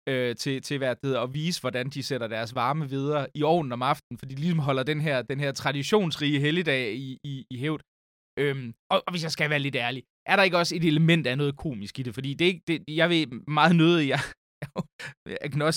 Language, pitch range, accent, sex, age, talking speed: Danish, 125-160 Hz, native, male, 20-39, 220 wpm